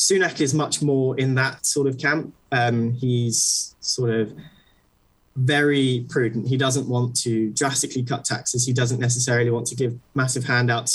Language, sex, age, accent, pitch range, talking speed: English, male, 20-39, British, 120-140 Hz, 165 wpm